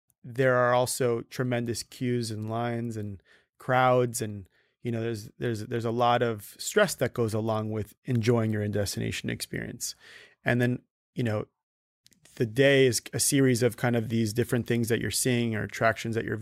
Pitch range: 110-125 Hz